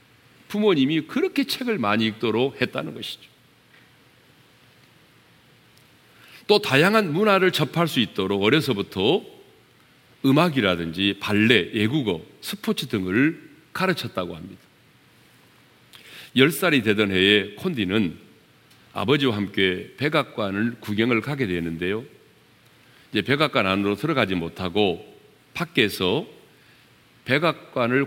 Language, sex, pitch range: Korean, male, 105-165 Hz